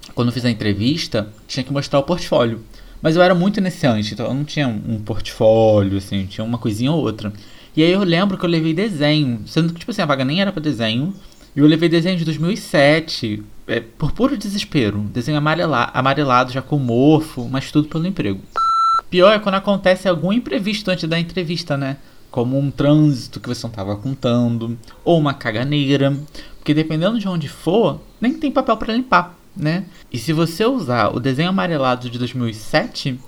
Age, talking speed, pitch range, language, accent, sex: 20-39, 190 wpm, 130-195 Hz, Portuguese, Brazilian, male